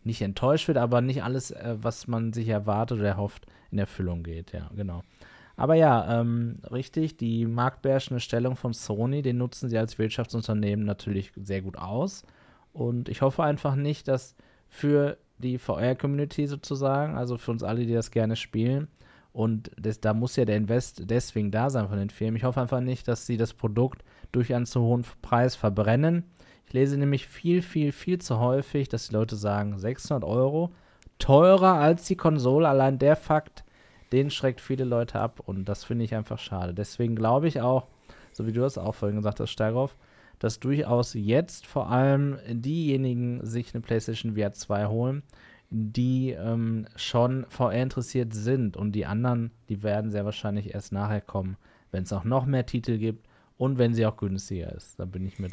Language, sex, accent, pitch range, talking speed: German, male, German, 105-130 Hz, 185 wpm